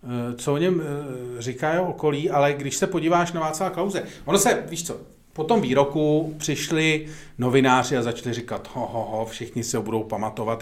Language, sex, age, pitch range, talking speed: Czech, male, 40-59, 115-140 Hz, 180 wpm